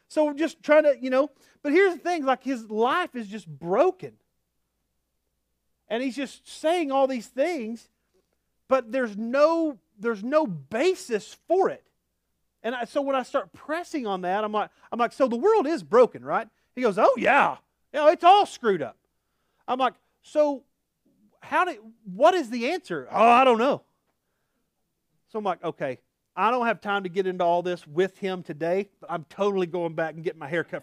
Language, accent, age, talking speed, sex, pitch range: English, American, 40-59, 195 wpm, male, 200-310 Hz